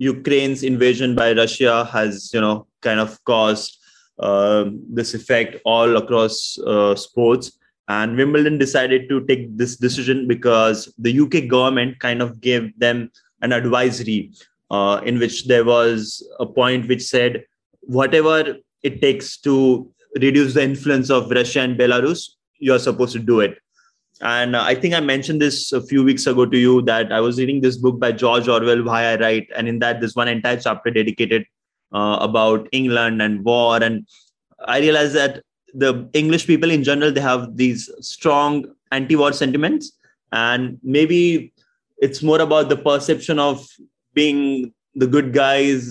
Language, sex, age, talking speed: English, male, 20-39, 160 wpm